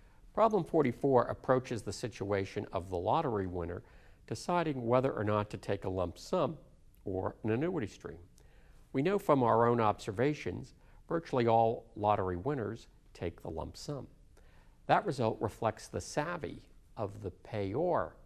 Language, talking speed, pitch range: English, 145 wpm, 95-130 Hz